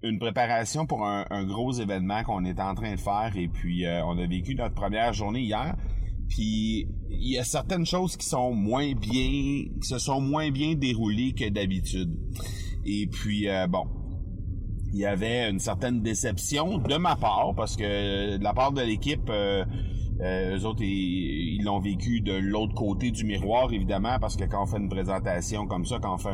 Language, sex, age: French, male, 30-49